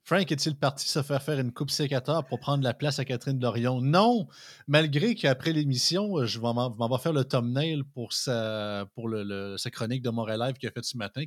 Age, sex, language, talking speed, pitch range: 30-49, male, French, 230 wpm, 115-175 Hz